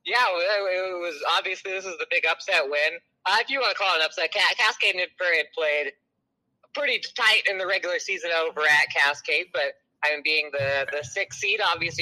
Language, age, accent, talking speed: English, 20-39, American, 210 wpm